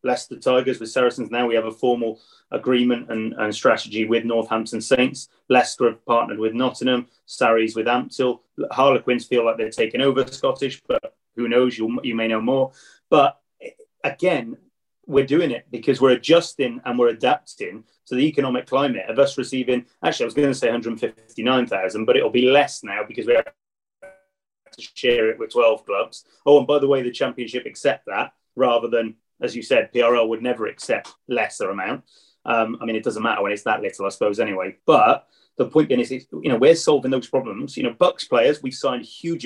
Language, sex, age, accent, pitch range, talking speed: English, male, 30-49, British, 115-135 Hz, 195 wpm